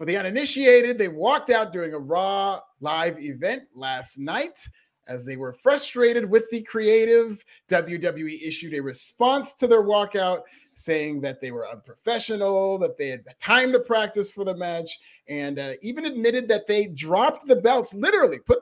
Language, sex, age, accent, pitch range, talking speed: English, male, 30-49, American, 160-225 Hz, 170 wpm